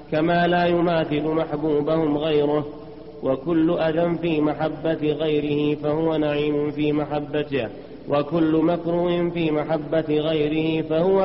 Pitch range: 145-165 Hz